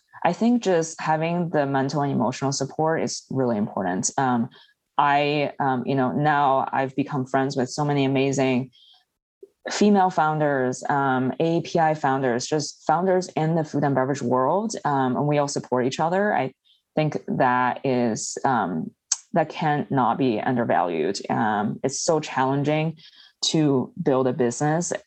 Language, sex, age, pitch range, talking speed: English, female, 20-39, 130-160 Hz, 150 wpm